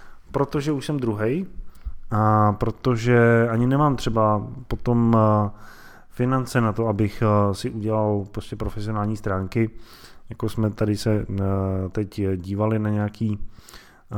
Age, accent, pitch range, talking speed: 20-39, native, 100-125 Hz, 115 wpm